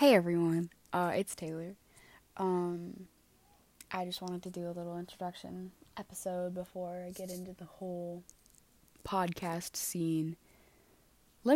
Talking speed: 125 wpm